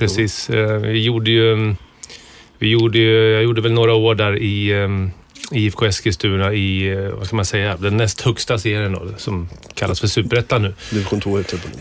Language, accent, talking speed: Swedish, native, 170 wpm